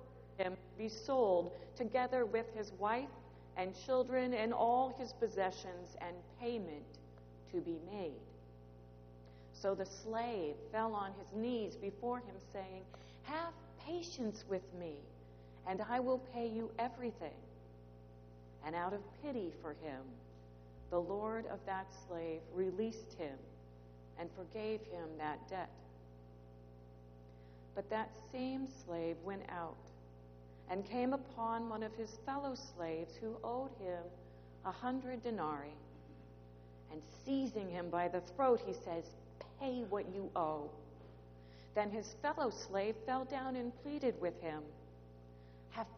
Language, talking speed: English, 130 wpm